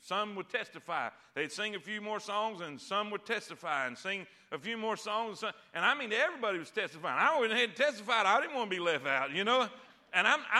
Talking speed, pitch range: 225 wpm, 195-265 Hz